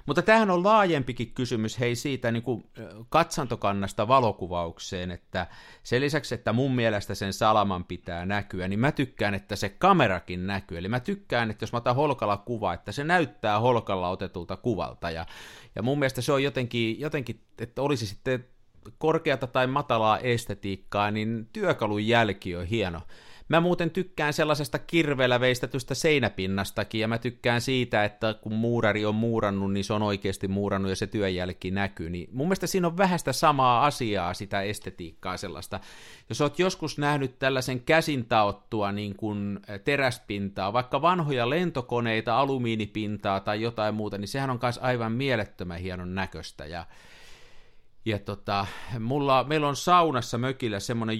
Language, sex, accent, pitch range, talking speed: Finnish, male, native, 100-135 Hz, 155 wpm